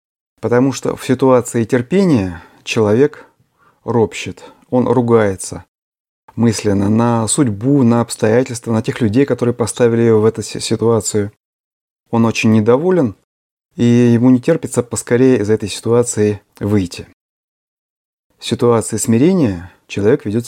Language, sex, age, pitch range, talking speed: Russian, male, 30-49, 105-130 Hz, 115 wpm